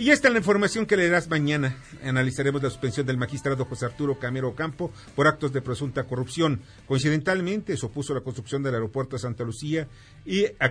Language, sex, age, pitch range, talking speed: Spanish, male, 50-69, 115-140 Hz, 195 wpm